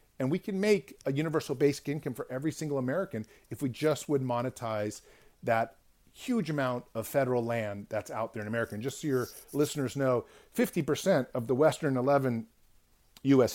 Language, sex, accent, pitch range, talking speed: English, male, American, 125-160 Hz, 175 wpm